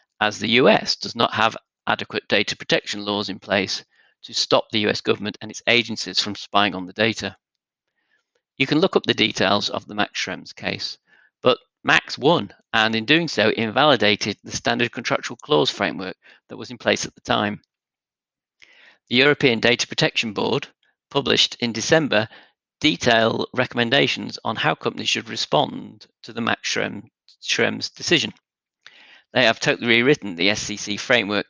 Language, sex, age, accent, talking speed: English, male, 50-69, British, 160 wpm